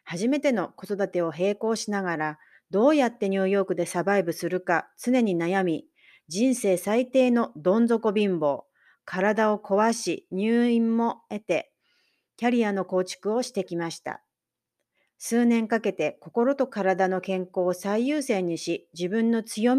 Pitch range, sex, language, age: 180-240 Hz, female, Japanese, 40-59